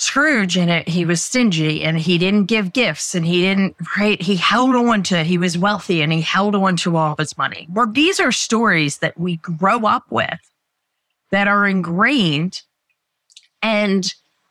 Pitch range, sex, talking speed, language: 160-205 Hz, female, 180 wpm, English